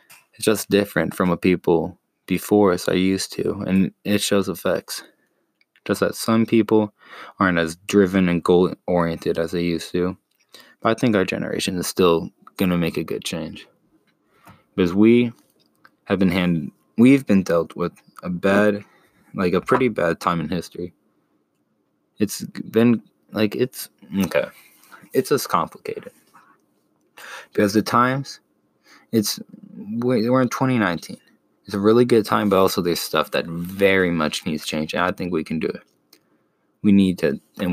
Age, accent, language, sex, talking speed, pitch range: 20-39, American, English, male, 155 wpm, 90-105 Hz